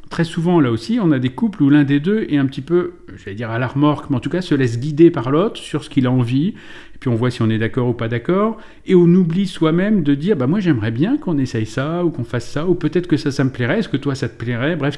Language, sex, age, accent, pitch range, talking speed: French, male, 40-59, French, 115-165 Hz, 315 wpm